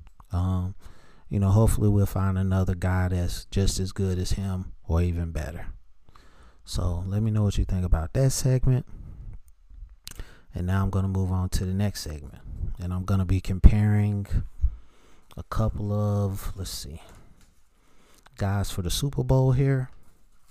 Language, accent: English, American